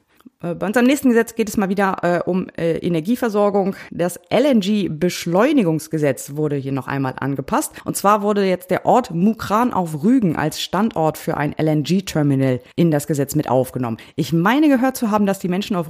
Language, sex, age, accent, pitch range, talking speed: German, female, 20-39, German, 155-215 Hz, 175 wpm